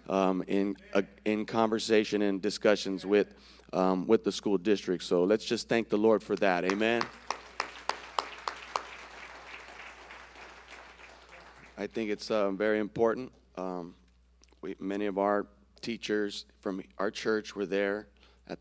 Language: English